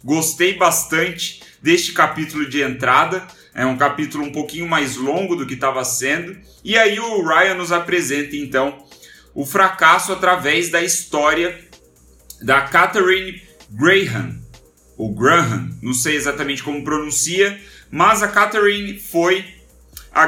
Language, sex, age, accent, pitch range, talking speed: Portuguese, male, 30-49, Brazilian, 145-190 Hz, 130 wpm